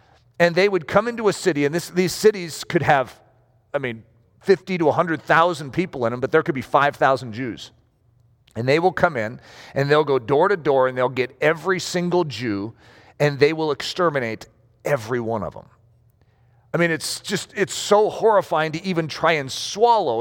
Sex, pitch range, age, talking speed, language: male, 120-185 Hz, 40-59, 185 wpm, English